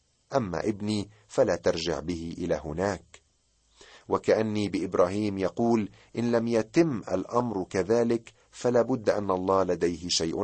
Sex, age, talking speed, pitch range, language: male, 40-59, 120 wpm, 90-115 Hz, Arabic